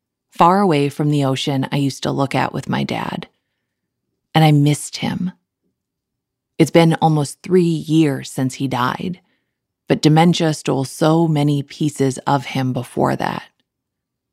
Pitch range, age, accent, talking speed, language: 135-185 Hz, 20-39, American, 145 wpm, English